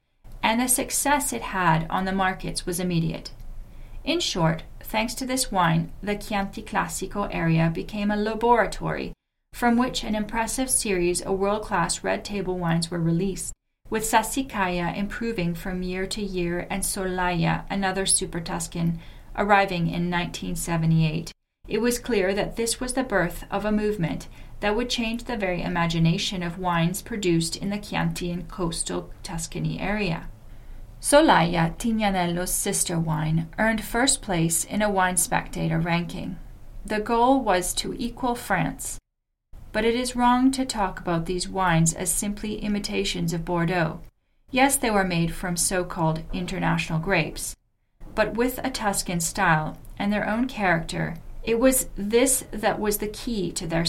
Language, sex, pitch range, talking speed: English, female, 170-215 Hz, 150 wpm